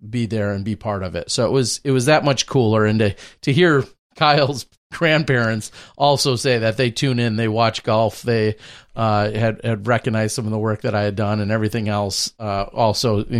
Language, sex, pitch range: English, male, 105-140 Hz